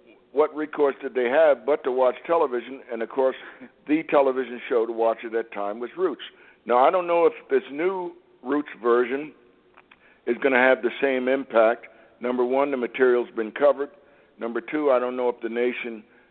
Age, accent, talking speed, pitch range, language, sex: 60-79, American, 195 wpm, 115-145 Hz, English, male